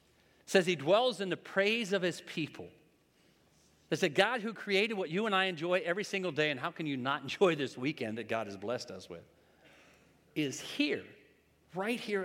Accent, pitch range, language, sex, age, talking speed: American, 130-175 Hz, English, male, 50-69, 195 wpm